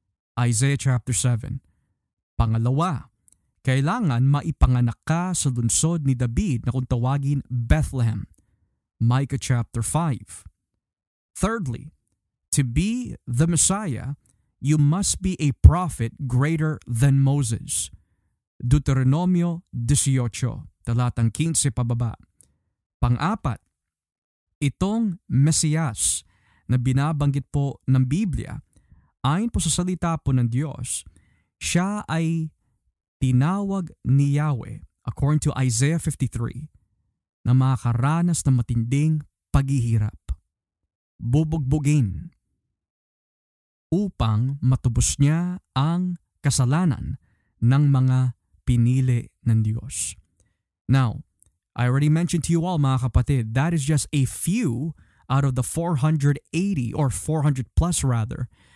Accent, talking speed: native, 100 wpm